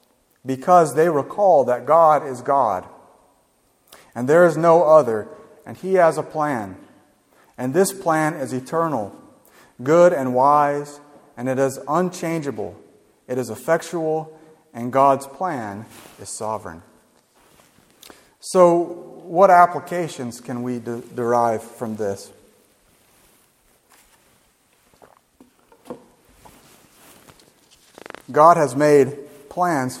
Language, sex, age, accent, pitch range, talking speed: English, male, 40-59, American, 130-165 Hz, 100 wpm